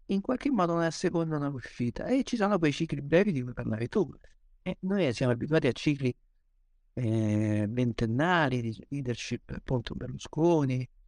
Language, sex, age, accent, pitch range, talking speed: Italian, male, 50-69, native, 120-160 Hz, 155 wpm